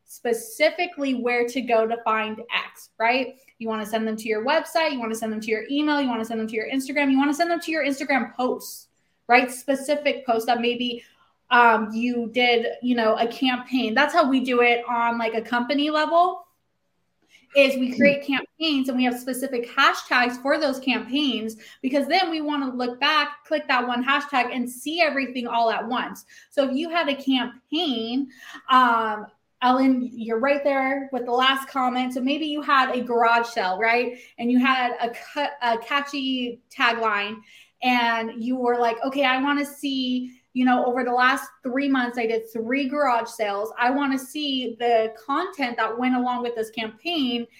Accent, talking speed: American, 190 wpm